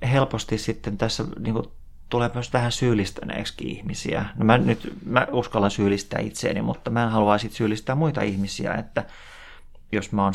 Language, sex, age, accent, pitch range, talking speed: Finnish, male, 30-49, native, 95-110 Hz, 155 wpm